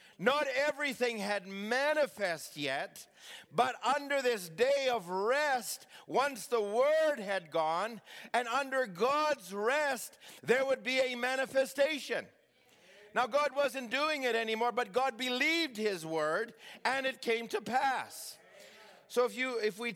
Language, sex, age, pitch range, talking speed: English, male, 50-69, 210-260 Hz, 140 wpm